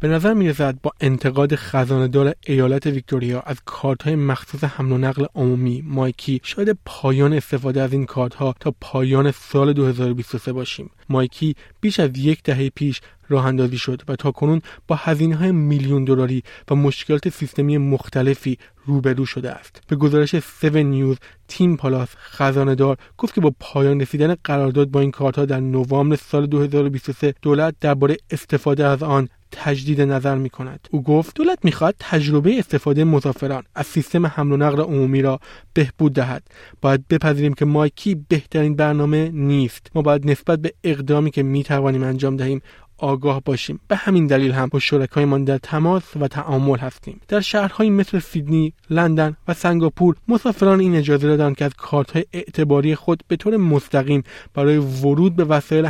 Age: 30-49